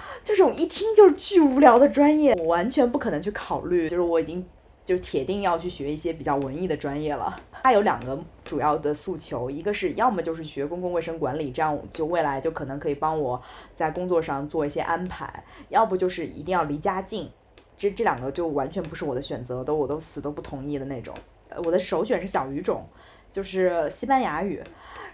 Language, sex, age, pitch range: Chinese, female, 20-39, 145-180 Hz